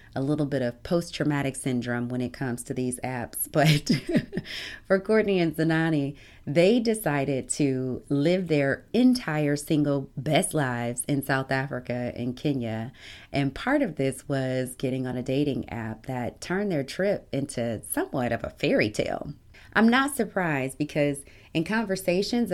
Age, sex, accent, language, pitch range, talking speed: 30-49, female, American, English, 125-160 Hz, 150 wpm